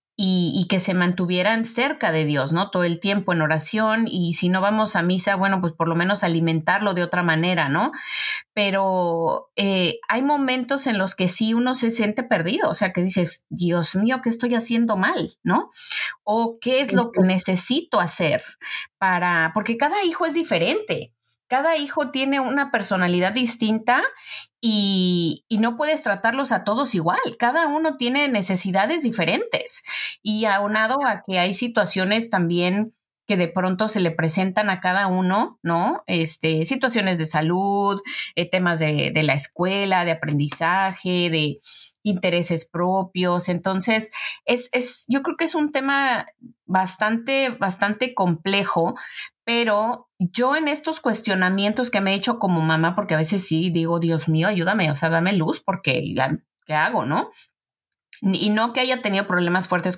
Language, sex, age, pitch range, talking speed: Spanish, female, 30-49, 175-240 Hz, 160 wpm